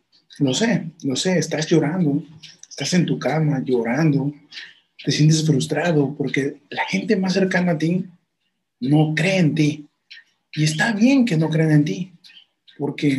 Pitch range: 140-165 Hz